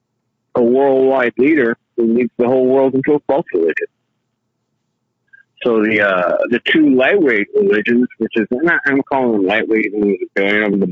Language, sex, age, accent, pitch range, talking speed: English, male, 50-69, American, 115-160 Hz, 155 wpm